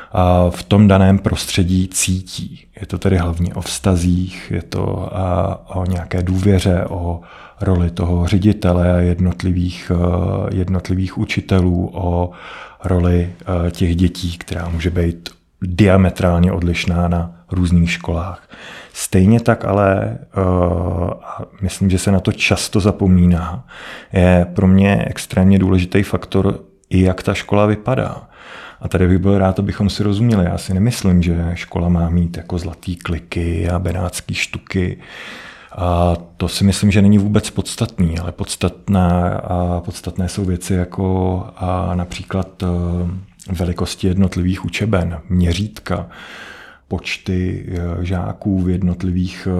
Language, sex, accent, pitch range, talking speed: Czech, male, native, 90-95 Hz, 125 wpm